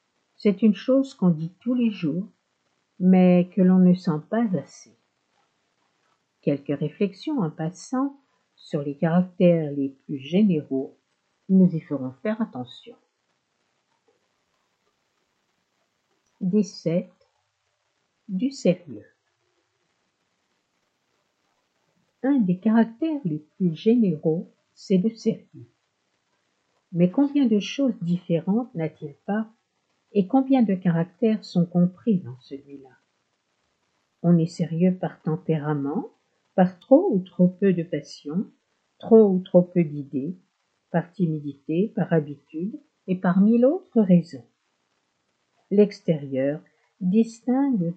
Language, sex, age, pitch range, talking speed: French, female, 60-79, 160-220 Hz, 105 wpm